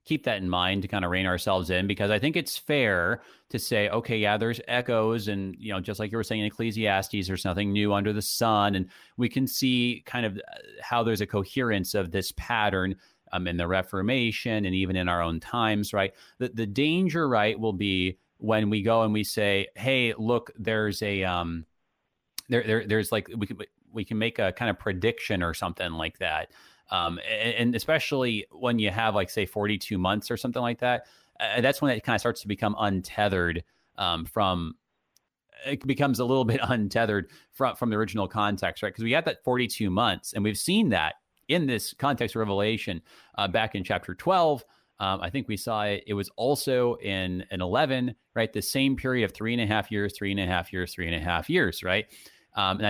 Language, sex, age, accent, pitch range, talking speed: English, male, 30-49, American, 95-120 Hz, 215 wpm